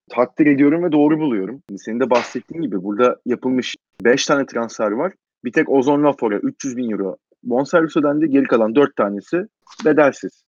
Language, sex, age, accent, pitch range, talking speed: Turkish, male, 30-49, native, 125-165 Hz, 170 wpm